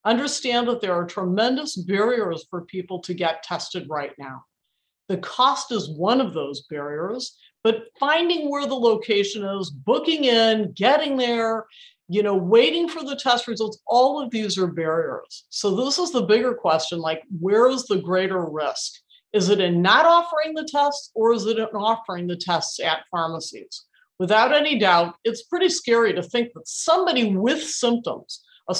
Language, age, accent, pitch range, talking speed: English, 50-69, American, 190-285 Hz, 175 wpm